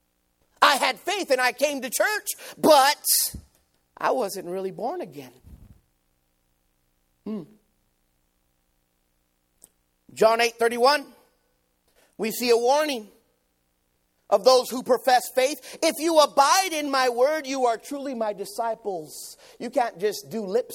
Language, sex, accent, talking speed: English, male, American, 125 wpm